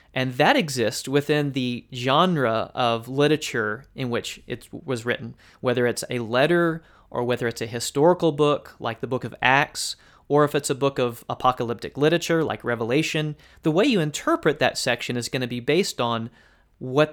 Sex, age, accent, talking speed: male, 30-49, American, 180 wpm